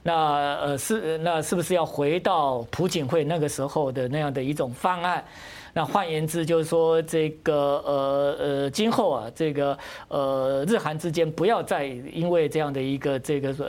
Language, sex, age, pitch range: Chinese, male, 50-69, 145-190 Hz